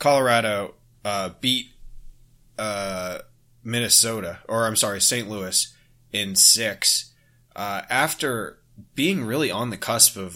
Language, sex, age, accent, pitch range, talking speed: English, male, 20-39, American, 100-120 Hz, 120 wpm